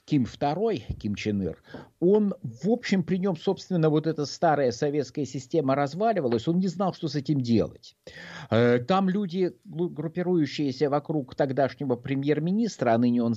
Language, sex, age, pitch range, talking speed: Russian, male, 50-69, 130-180 Hz, 150 wpm